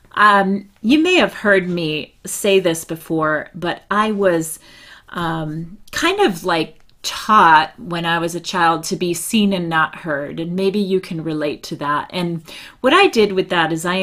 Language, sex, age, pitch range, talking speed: English, female, 30-49, 165-205 Hz, 185 wpm